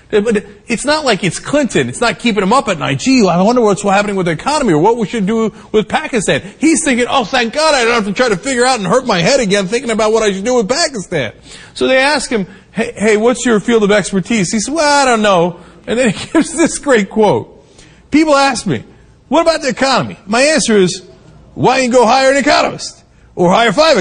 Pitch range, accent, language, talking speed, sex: 195-270 Hz, American, English, 240 wpm, male